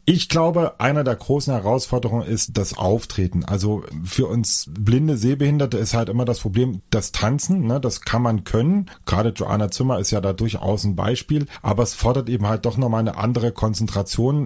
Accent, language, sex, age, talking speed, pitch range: German, English, male, 40-59, 185 wpm, 110-135 Hz